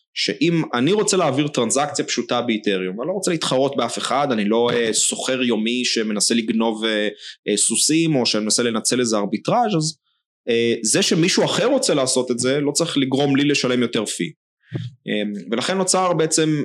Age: 20-39